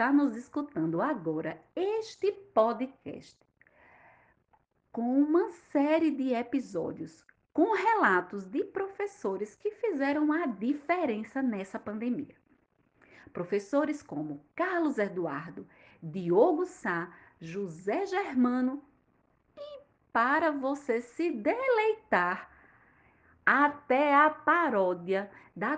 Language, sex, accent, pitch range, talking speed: Portuguese, female, Brazilian, 215-315 Hz, 90 wpm